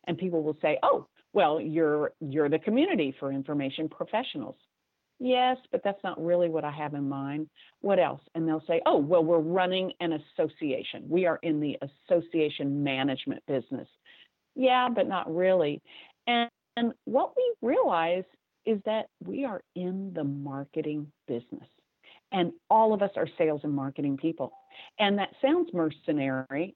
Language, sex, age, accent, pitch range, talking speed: English, female, 50-69, American, 150-210 Hz, 160 wpm